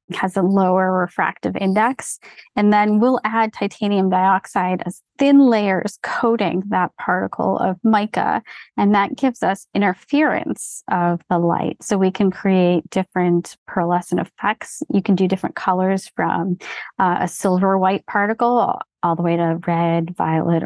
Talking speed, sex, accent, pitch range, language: 150 wpm, female, American, 175-205 Hz, English